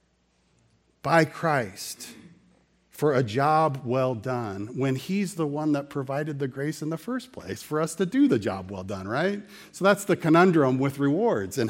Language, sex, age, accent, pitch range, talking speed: English, male, 40-59, American, 140-195 Hz, 180 wpm